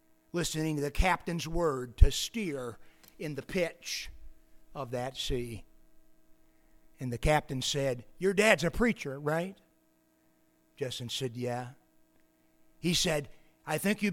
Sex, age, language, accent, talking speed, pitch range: male, 50-69, English, American, 125 wpm, 115-160 Hz